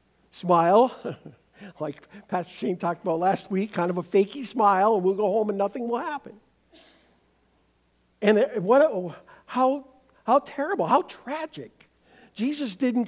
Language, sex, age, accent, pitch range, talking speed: English, male, 50-69, American, 175-235 Hz, 140 wpm